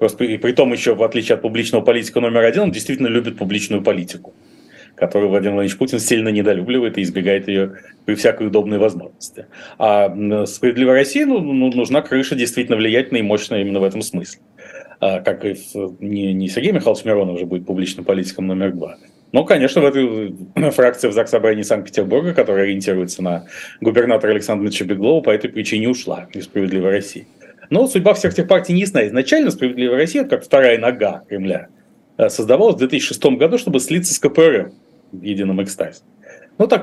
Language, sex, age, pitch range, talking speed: Russian, male, 30-49, 100-135 Hz, 165 wpm